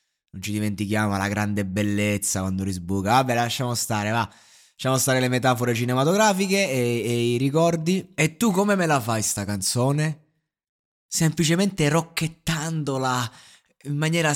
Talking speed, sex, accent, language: 140 wpm, male, native, Italian